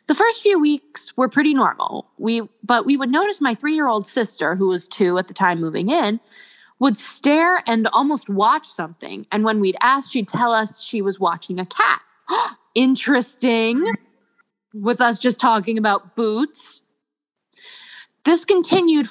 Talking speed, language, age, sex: 155 wpm, English, 20-39, female